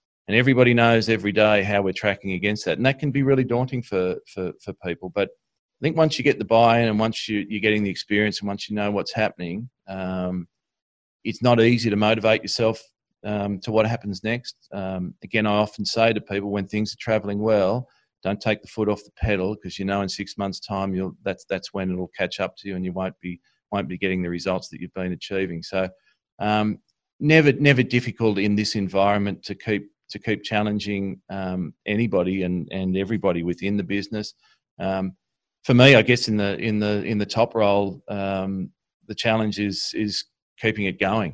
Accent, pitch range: Australian, 95-110 Hz